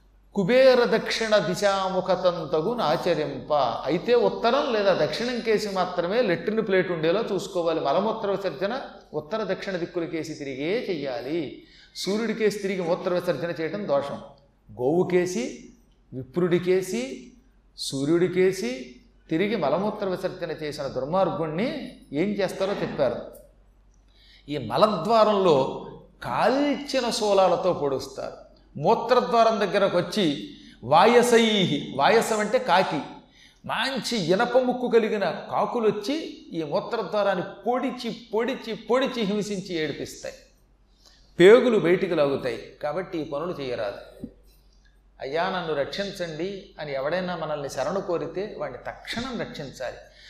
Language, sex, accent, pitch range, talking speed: Telugu, male, native, 170-230 Hz, 95 wpm